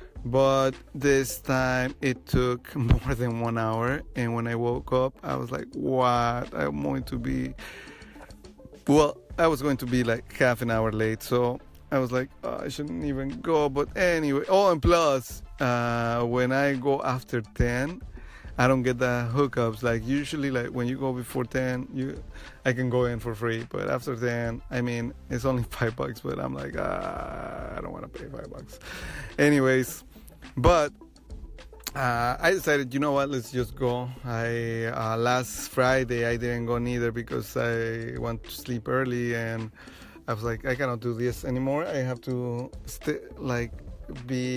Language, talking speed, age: English, 180 wpm, 30-49